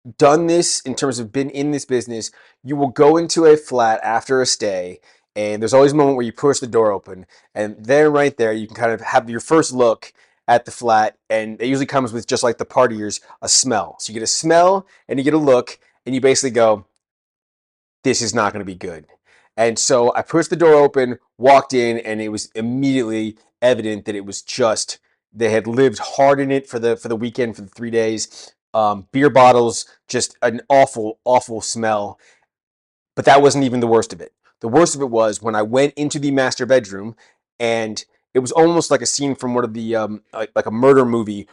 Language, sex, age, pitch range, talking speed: English, male, 30-49, 110-140 Hz, 220 wpm